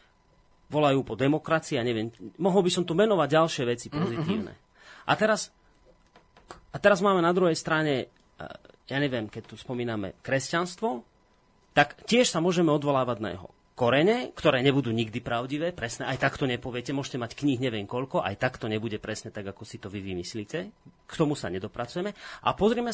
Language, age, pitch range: Slovak, 30-49, 115-160 Hz